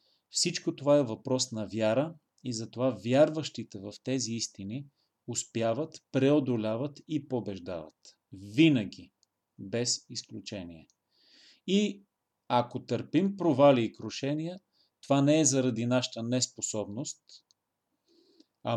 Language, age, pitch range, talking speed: Bulgarian, 40-59, 115-145 Hz, 100 wpm